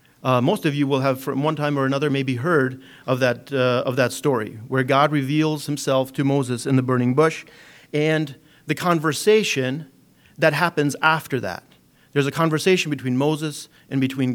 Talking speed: 180 wpm